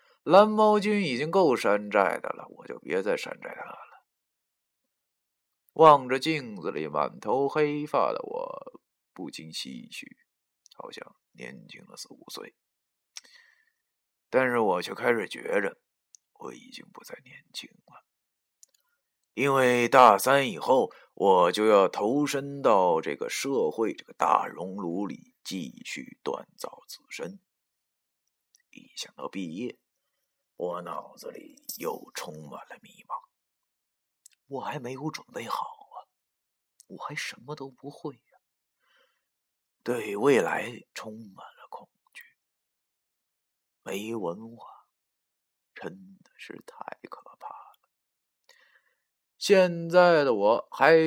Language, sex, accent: Chinese, male, native